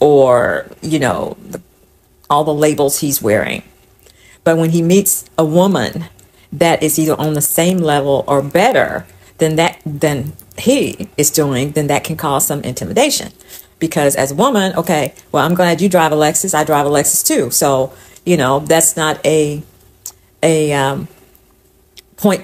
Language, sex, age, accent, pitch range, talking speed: English, female, 50-69, American, 145-175 Hz, 165 wpm